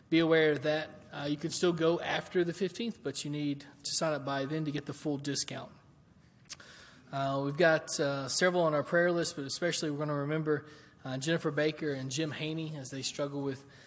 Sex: male